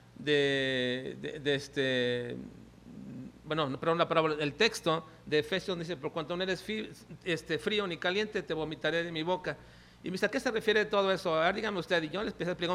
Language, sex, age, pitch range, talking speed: Spanish, male, 40-59, 140-210 Hz, 205 wpm